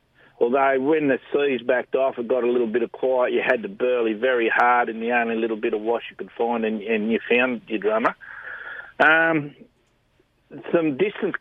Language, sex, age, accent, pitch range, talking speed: English, male, 50-69, Australian, 120-175 Hz, 200 wpm